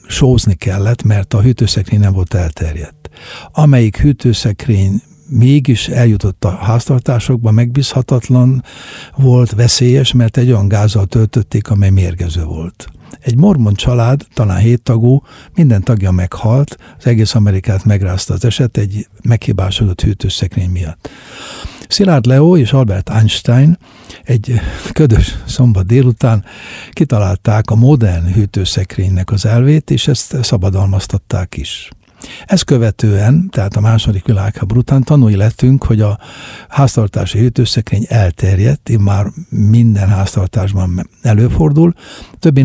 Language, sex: Hungarian, male